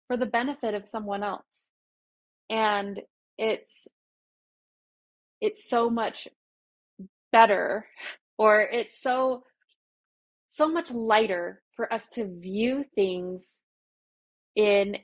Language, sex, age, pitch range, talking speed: English, female, 20-39, 195-235 Hz, 95 wpm